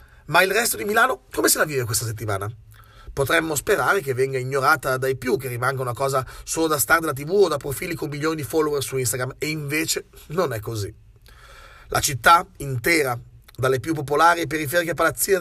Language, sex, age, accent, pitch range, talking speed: Italian, male, 30-49, native, 130-180 Hz, 190 wpm